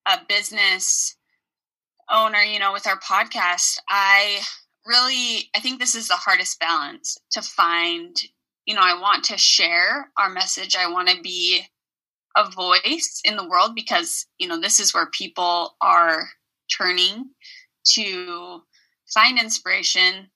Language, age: English, 20-39